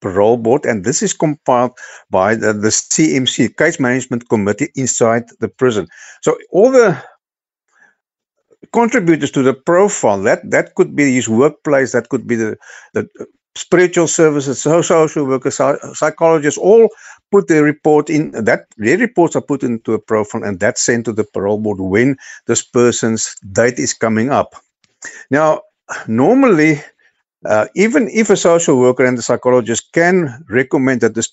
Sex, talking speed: male, 155 wpm